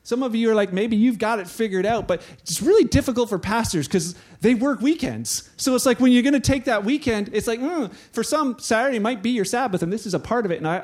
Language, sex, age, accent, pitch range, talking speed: English, male, 40-59, American, 180-245 Hz, 275 wpm